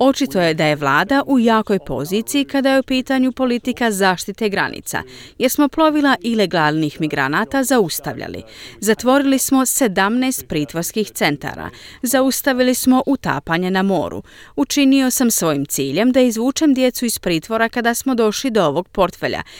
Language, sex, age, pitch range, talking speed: Croatian, female, 30-49, 165-265 Hz, 140 wpm